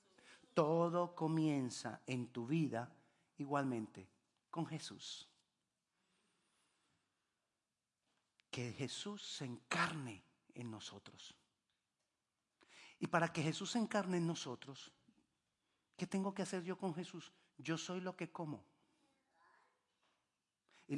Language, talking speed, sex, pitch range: Spanish, 100 wpm, male, 135-175 Hz